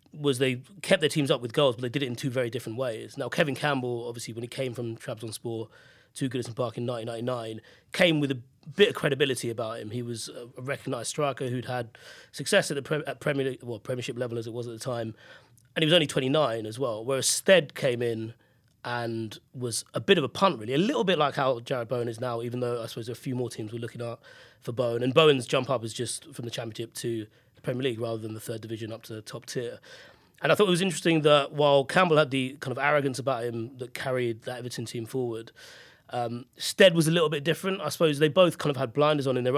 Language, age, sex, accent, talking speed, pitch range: English, 30-49, male, British, 250 wpm, 120-145 Hz